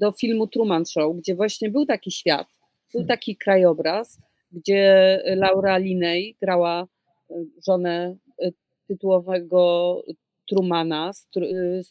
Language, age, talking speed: Polish, 40-59, 100 wpm